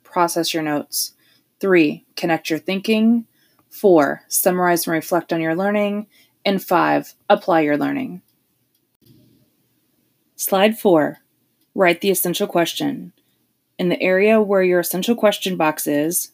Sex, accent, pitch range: female, American, 165-210 Hz